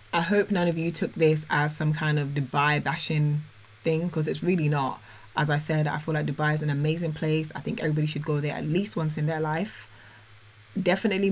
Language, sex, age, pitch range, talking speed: English, female, 20-39, 145-165 Hz, 225 wpm